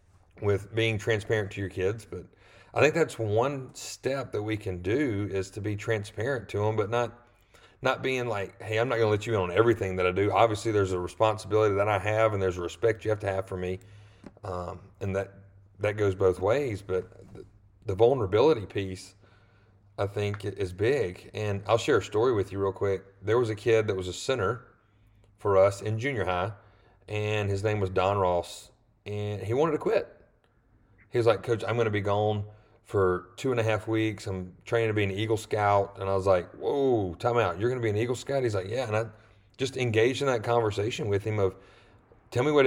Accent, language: American, English